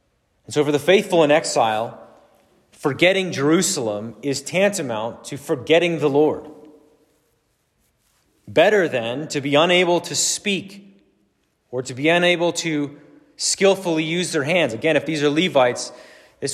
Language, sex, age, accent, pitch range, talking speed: English, male, 30-49, American, 125-165 Hz, 135 wpm